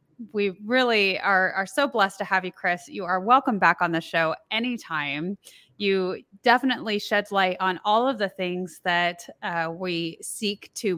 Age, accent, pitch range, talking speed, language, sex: 20-39, American, 180-225 Hz, 175 wpm, English, female